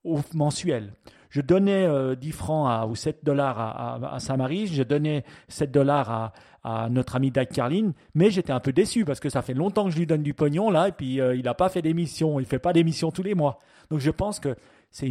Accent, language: French, French